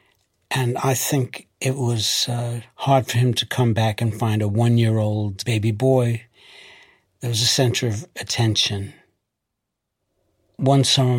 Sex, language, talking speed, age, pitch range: male, English, 140 wpm, 60-79, 110-130 Hz